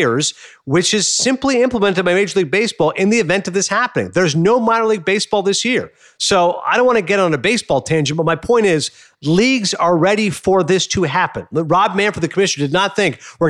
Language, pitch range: English, 160-200 Hz